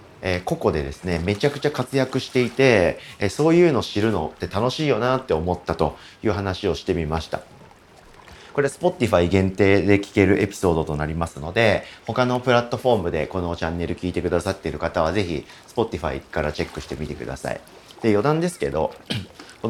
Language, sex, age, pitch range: Japanese, male, 40-59, 85-145 Hz